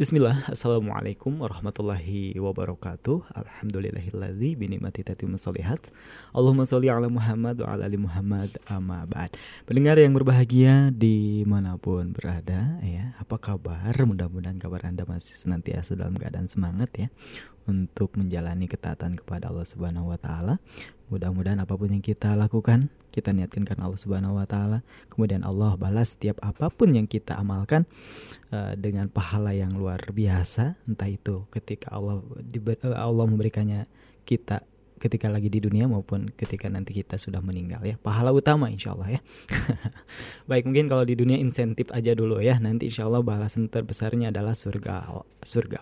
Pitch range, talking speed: 95-120 Hz, 140 wpm